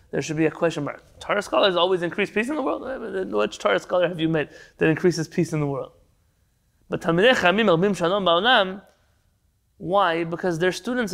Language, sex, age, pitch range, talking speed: English, male, 20-39, 155-205 Hz, 190 wpm